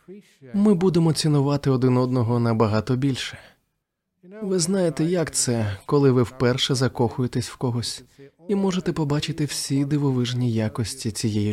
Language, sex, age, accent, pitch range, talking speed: Ukrainian, male, 20-39, native, 115-155 Hz, 125 wpm